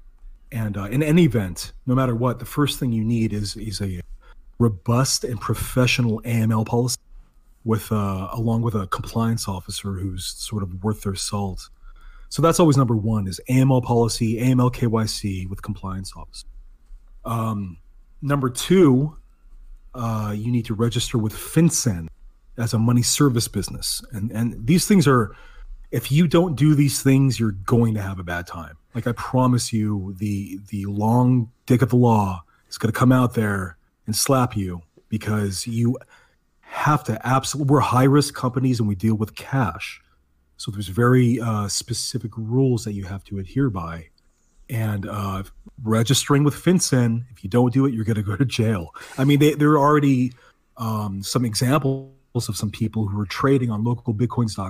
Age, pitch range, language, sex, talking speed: 30-49, 100-125 Hz, English, male, 175 wpm